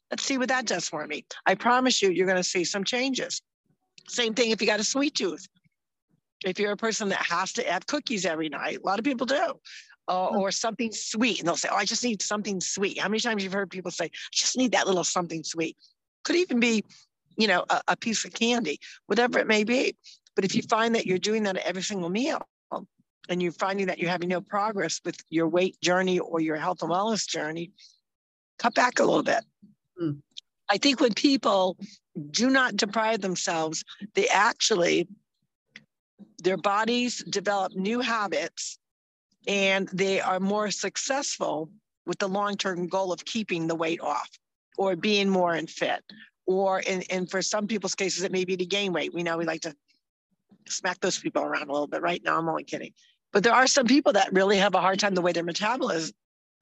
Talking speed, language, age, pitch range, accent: 205 wpm, English, 50-69, 180-225 Hz, American